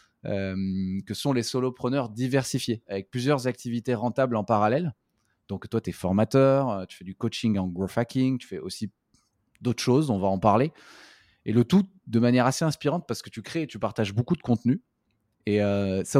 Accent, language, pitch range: French, French, 105-130 Hz